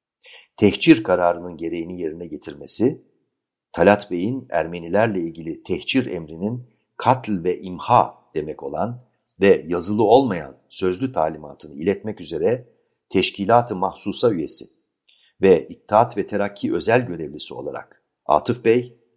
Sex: male